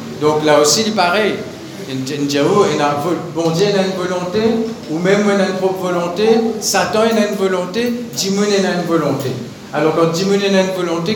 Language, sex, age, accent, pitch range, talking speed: Italian, male, 50-69, French, 155-200 Hz, 205 wpm